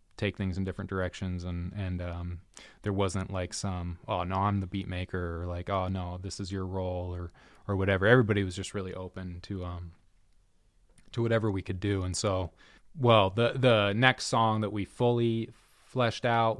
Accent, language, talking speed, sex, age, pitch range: American, English, 190 wpm, male, 20-39, 95-110 Hz